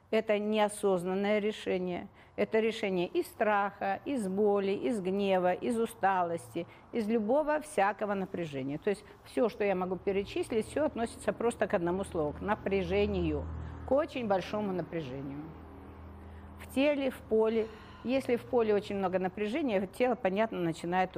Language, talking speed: Russian, 140 wpm